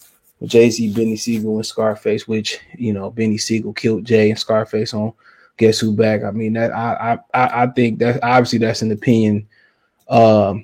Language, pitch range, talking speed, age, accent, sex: English, 110-145 Hz, 180 wpm, 20-39, American, male